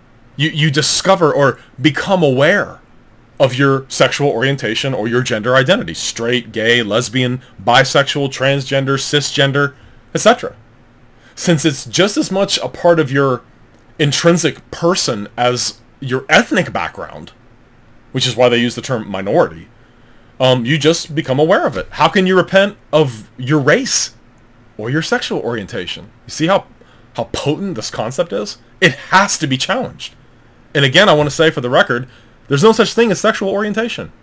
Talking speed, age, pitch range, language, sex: 160 wpm, 30-49, 120-155 Hz, English, male